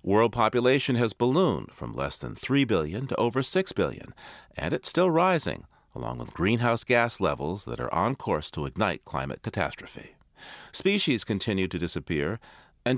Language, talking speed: English, 160 wpm